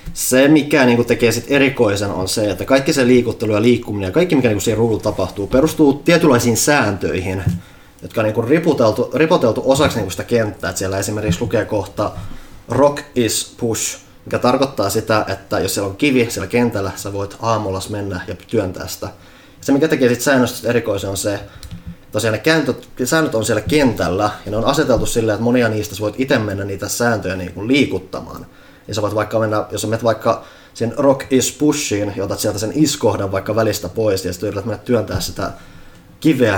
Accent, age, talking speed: native, 20-39, 190 wpm